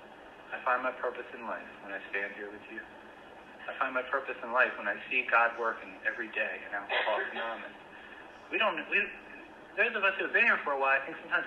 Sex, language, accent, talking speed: male, English, American, 215 wpm